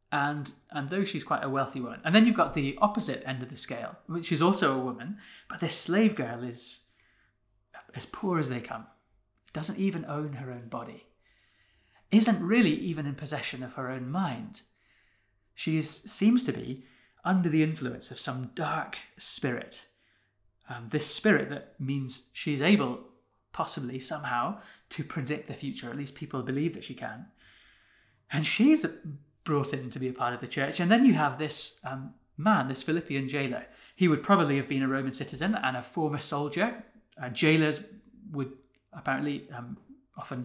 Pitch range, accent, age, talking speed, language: 130-160 Hz, British, 30-49, 175 wpm, English